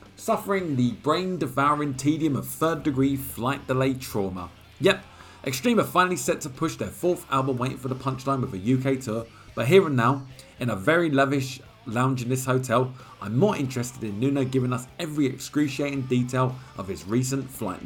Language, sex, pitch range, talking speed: English, male, 105-140 Hz, 175 wpm